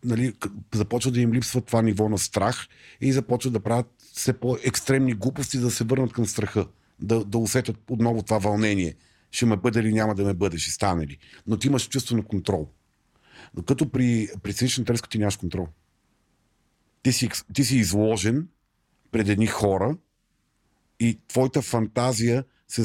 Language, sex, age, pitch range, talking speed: Bulgarian, male, 40-59, 105-125 Hz, 170 wpm